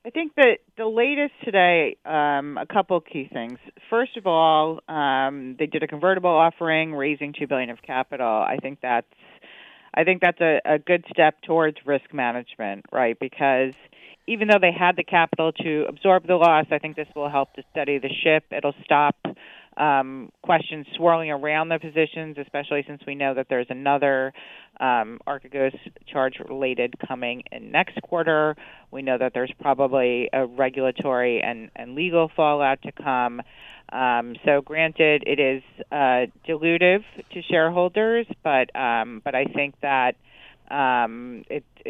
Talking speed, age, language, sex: 160 wpm, 40-59, English, female